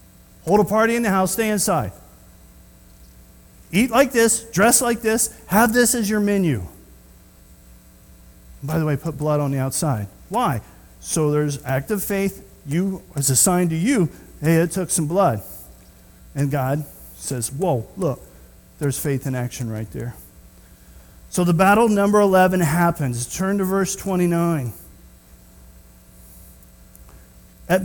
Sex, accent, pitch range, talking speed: male, American, 135-200 Hz, 140 wpm